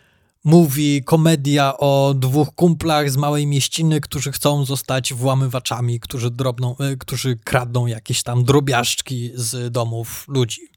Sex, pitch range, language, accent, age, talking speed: male, 135-165 Hz, Polish, native, 20-39, 125 wpm